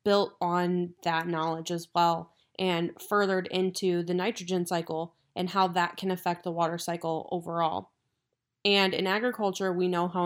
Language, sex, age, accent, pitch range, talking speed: English, female, 20-39, American, 170-190 Hz, 160 wpm